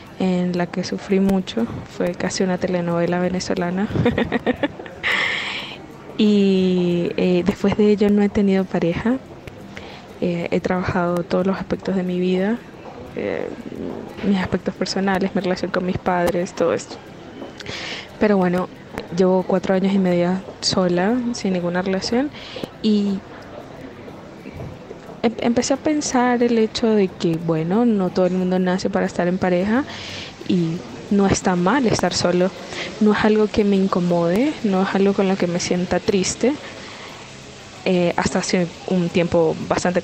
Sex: female